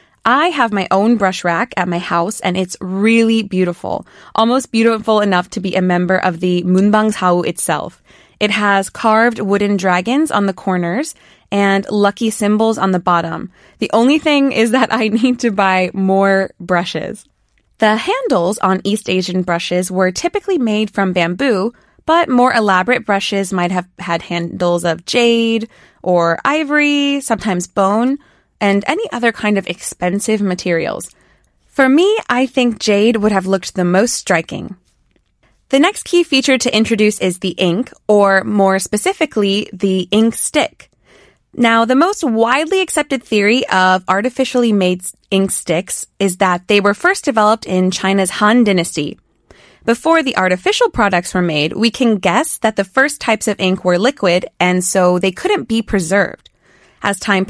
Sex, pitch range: female, 185-240 Hz